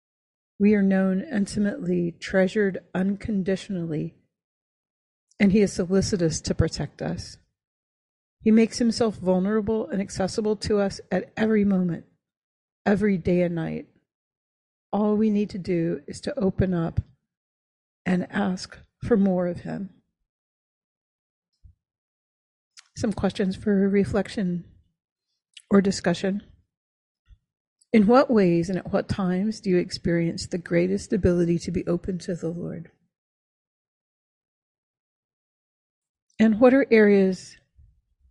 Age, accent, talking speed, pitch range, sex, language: 40-59, American, 115 wpm, 170-205 Hz, female, English